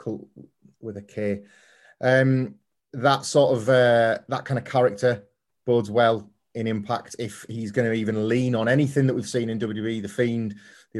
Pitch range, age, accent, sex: 105-125 Hz, 30-49, British, male